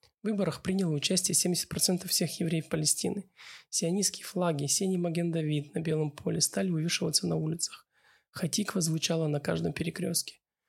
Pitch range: 160-195 Hz